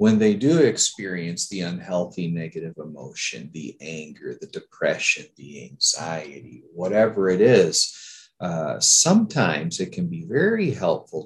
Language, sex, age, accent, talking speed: English, male, 40-59, American, 130 wpm